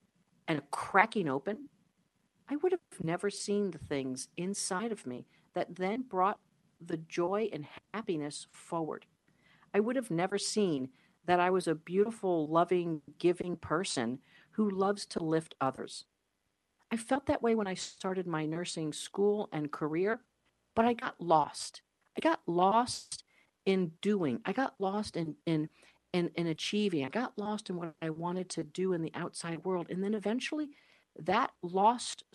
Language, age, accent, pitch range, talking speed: English, 50-69, American, 170-220 Hz, 160 wpm